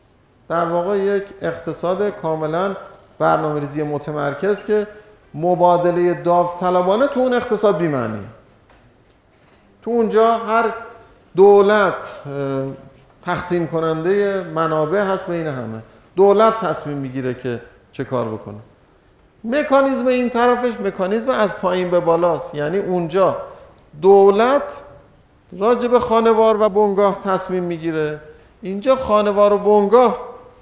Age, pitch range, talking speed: 50-69, 150-210 Hz, 105 wpm